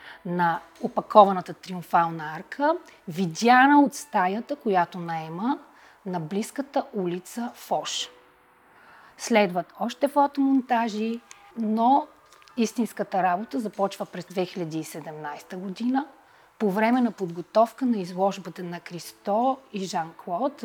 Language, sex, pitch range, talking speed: Bulgarian, female, 180-245 Hz, 95 wpm